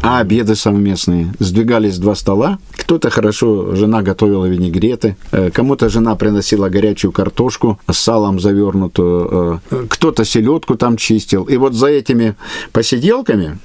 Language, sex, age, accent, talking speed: Russian, male, 50-69, native, 125 wpm